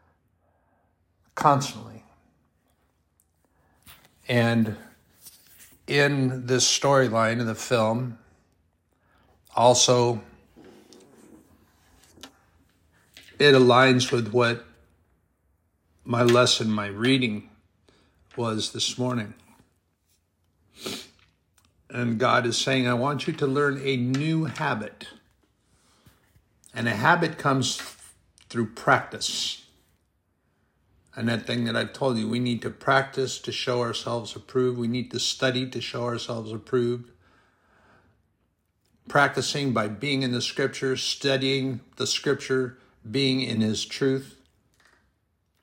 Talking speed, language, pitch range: 100 wpm, English, 95-130 Hz